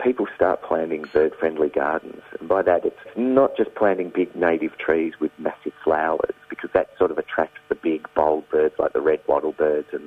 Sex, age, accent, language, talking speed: male, 40-59, Australian, English, 190 wpm